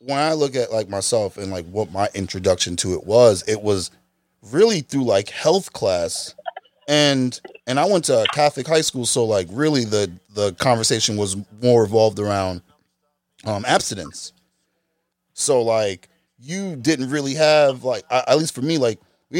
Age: 30-49